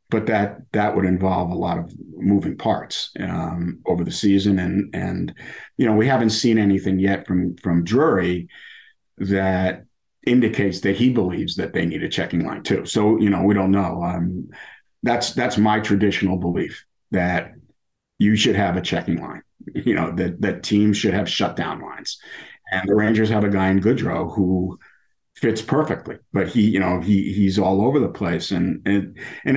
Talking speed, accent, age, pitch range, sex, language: 185 wpm, American, 50-69, 95-110 Hz, male, English